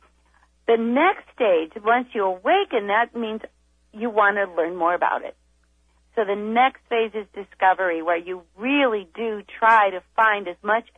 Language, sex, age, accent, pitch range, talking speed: English, female, 40-59, American, 185-250 Hz, 165 wpm